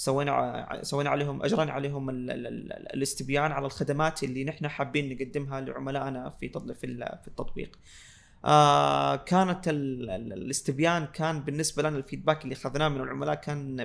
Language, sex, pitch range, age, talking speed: Arabic, male, 135-155 Hz, 20-39, 145 wpm